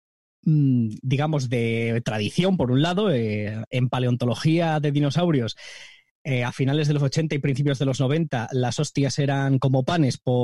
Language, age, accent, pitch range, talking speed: Spanish, 20-39, Spanish, 130-160 Hz, 155 wpm